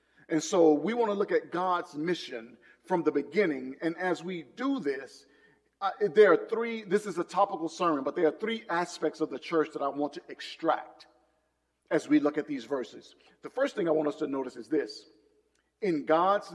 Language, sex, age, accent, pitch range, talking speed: English, male, 40-59, American, 145-225 Hz, 205 wpm